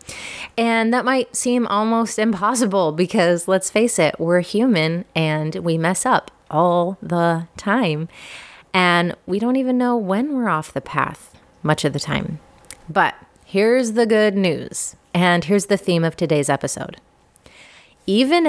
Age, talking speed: 30-49, 150 wpm